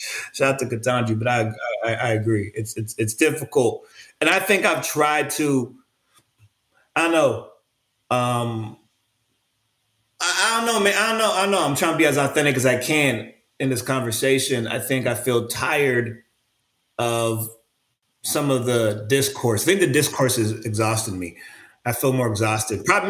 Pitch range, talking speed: 120-145 Hz, 175 wpm